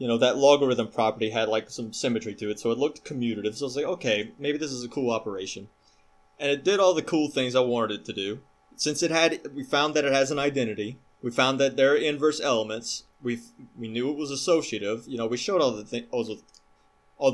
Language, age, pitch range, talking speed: English, 20-39, 110-140 Hz, 245 wpm